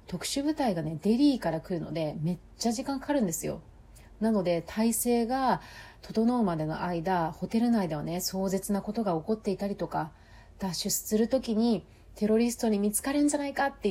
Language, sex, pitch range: Japanese, female, 165-245 Hz